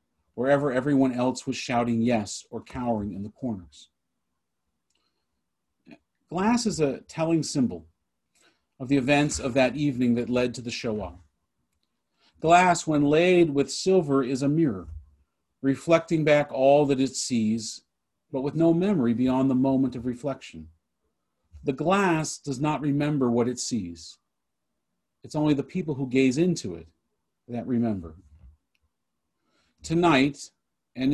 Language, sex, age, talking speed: English, male, 40-59, 135 wpm